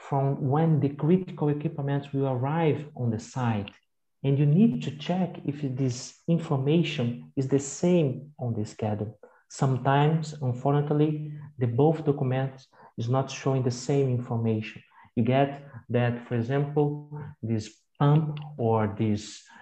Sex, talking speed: male, 135 wpm